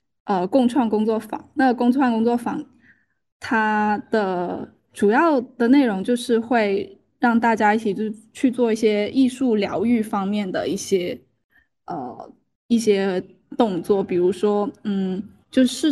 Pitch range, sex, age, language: 200-260 Hz, female, 10-29, Chinese